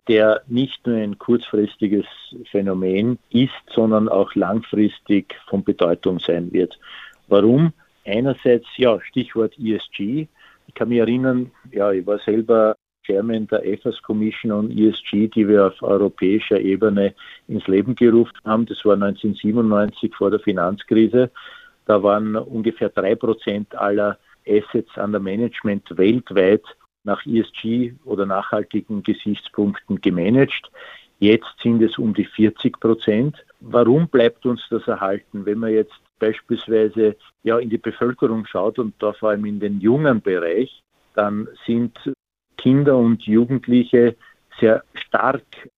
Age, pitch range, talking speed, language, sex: 50-69, 105-120 Hz, 130 wpm, German, male